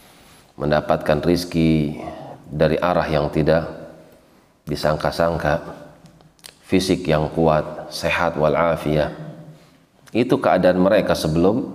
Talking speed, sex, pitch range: 80 wpm, male, 80-90 Hz